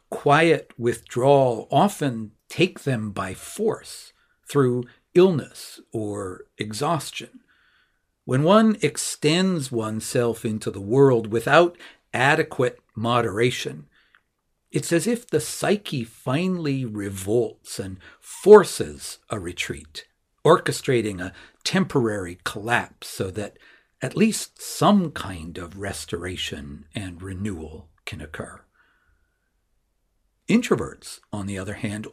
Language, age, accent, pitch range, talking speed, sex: English, 60-79, American, 110-160 Hz, 100 wpm, male